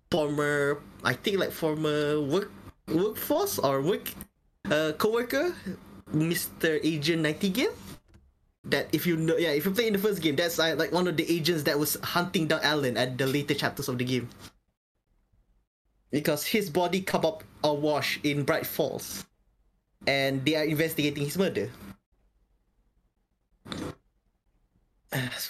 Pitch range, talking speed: 145-195 Hz, 140 wpm